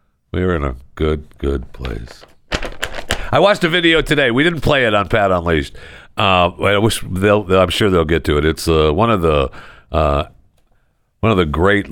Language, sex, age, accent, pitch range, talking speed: English, male, 60-79, American, 80-105 Hz, 190 wpm